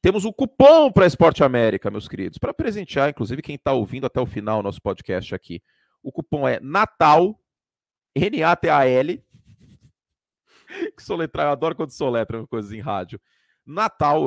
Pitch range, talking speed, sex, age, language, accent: 105-150 Hz, 155 wpm, male, 40-59, Portuguese, Brazilian